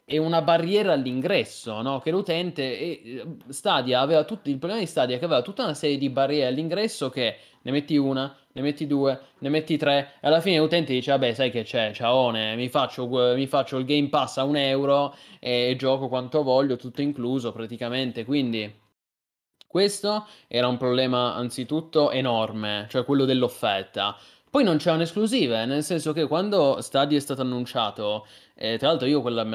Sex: male